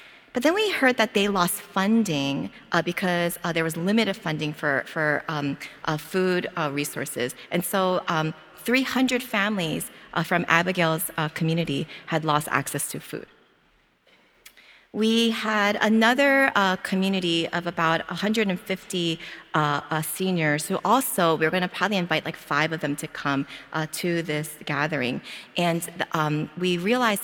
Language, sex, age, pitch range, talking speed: English, female, 30-49, 160-210 Hz, 155 wpm